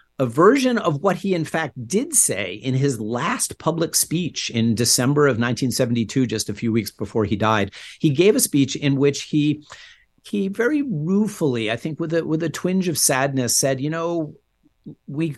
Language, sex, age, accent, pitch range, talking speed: English, male, 50-69, American, 110-145 Hz, 185 wpm